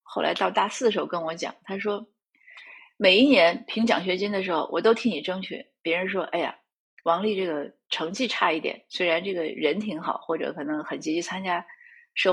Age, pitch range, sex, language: 30-49, 175-240 Hz, female, Chinese